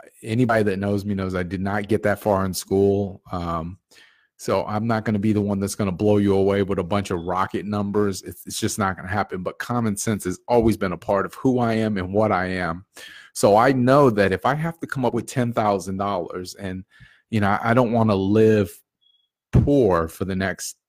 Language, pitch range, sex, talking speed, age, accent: English, 95-120 Hz, male, 235 wpm, 30-49, American